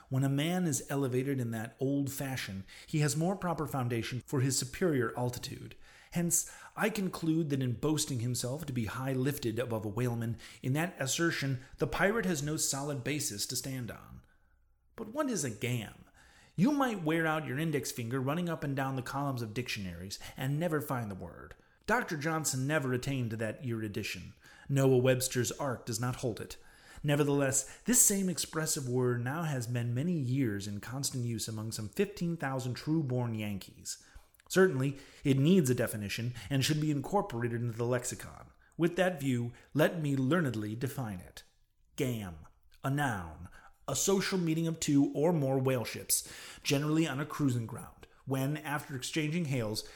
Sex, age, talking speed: male, 30-49, 170 wpm